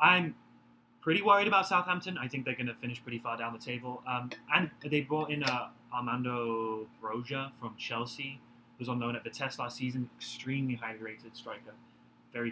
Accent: British